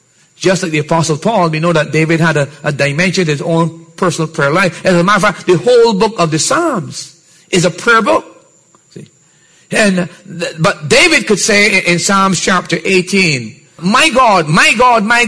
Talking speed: 195 wpm